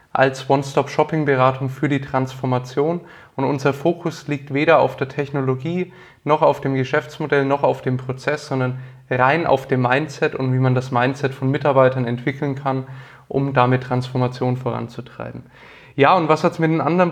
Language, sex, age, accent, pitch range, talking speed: German, male, 20-39, German, 135-160 Hz, 165 wpm